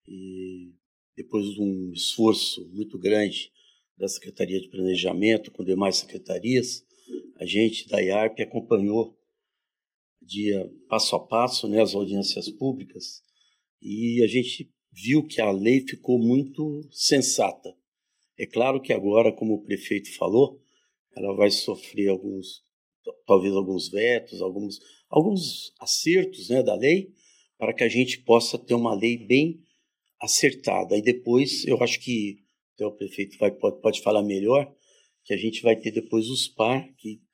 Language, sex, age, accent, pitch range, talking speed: Portuguese, male, 50-69, Brazilian, 105-130 Hz, 145 wpm